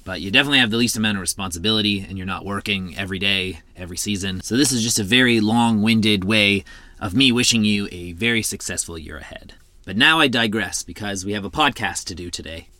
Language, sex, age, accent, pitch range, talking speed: English, male, 30-49, American, 100-125 Hz, 215 wpm